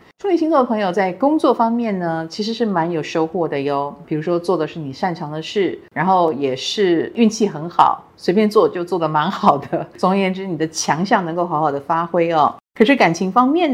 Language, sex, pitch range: Chinese, female, 155-215 Hz